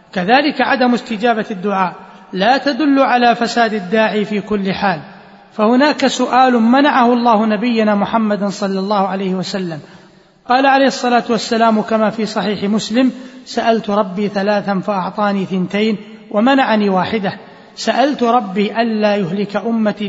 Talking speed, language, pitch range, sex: 125 wpm, Arabic, 200-240 Hz, male